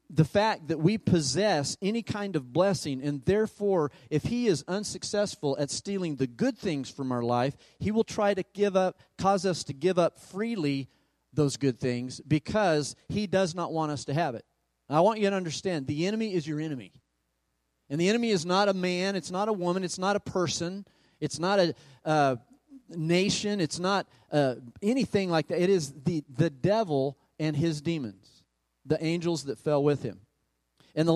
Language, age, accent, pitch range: English, 40-59, American, 135-190 Hz